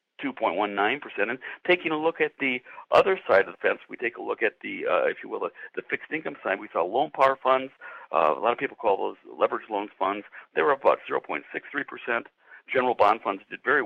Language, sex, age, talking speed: English, male, 60-79, 220 wpm